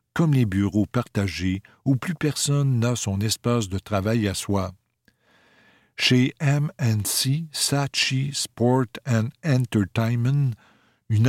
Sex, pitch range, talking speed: male, 100-130 Hz, 110 wpm